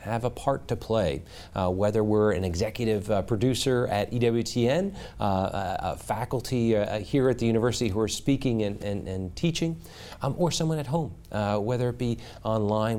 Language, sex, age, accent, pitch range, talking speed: English, male, 40-59, American, 95-125 Hz, 185 wpm